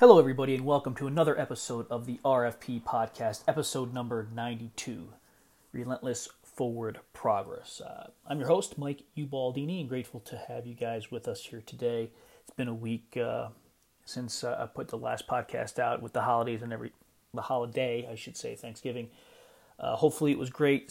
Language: English